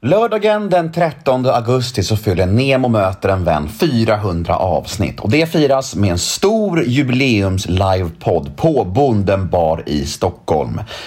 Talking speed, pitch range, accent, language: 140 wpm, 90-135 Hz, native, Swedish